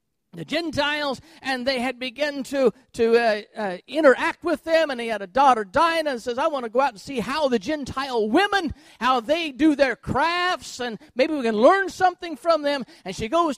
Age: 50-69